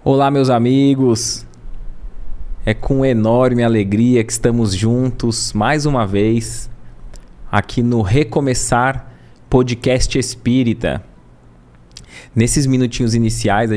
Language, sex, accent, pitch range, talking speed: Portuguese, male, Brazilian, 110-130 Hz, 95 wpm